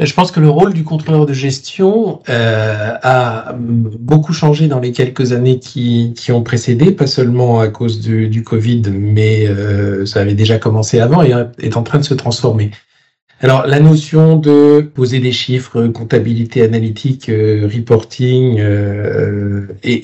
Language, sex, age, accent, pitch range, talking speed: French, male, 50-69, French, 110-135 Hz, 160 wpm